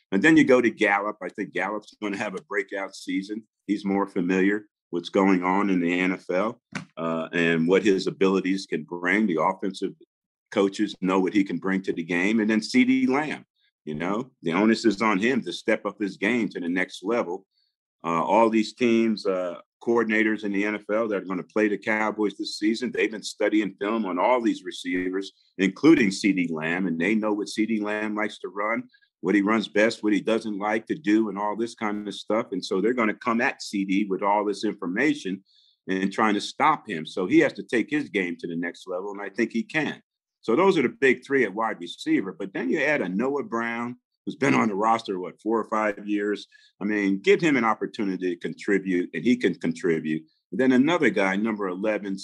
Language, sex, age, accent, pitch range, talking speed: English, male, 50-69, American, 95-115 Hz, 220 wpm